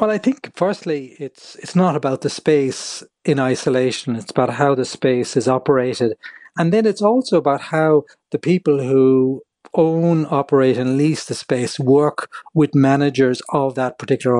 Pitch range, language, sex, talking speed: 135-170 Hz, English, male, 165 wpm